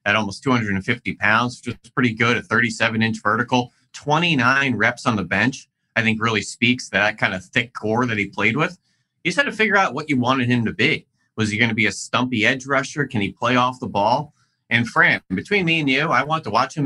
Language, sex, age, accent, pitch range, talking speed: English, male, 30-49, American, 110-160 Hz, 240 wpm